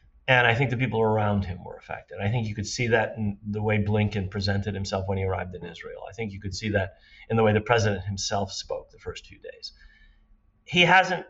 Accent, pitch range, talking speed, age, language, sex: American, 100-115 Hz, 240 wpm, 40-59, English, male